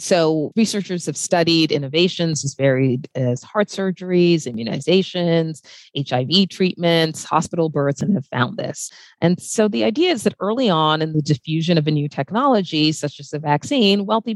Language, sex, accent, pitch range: English, female, American, 145-200 Hz